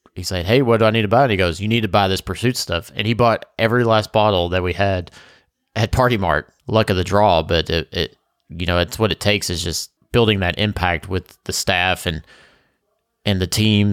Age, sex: 30-49, male